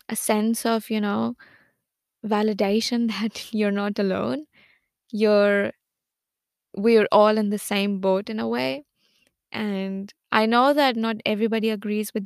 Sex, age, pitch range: female, 20-39, 205-225 Hz